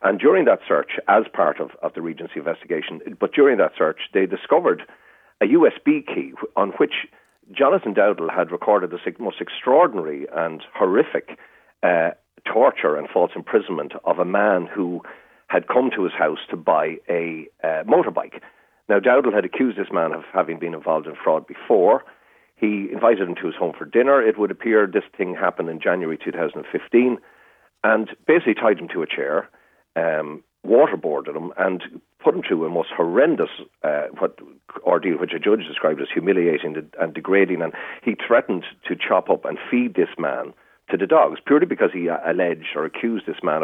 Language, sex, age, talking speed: English, male, 40-59, 175 wpm